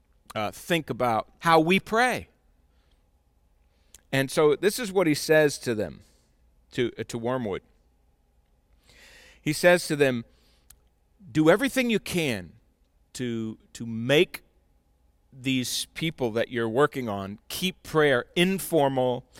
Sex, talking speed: male, 120 wpm